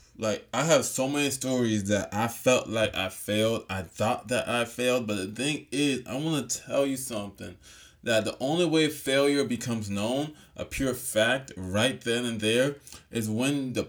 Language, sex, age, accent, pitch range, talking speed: English, male, 20-39, American, 115-145 Hz, 190 wpm